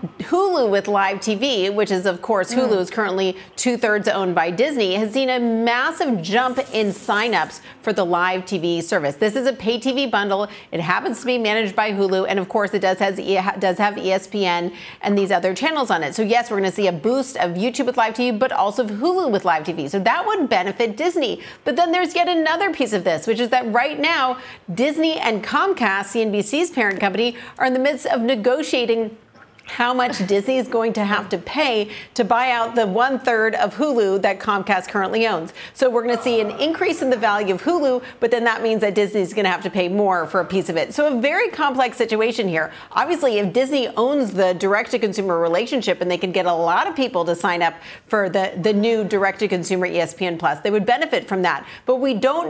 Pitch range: 195-255 Hz